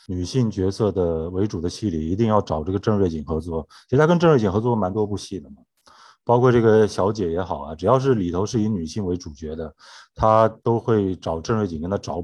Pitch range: 90-120 Hz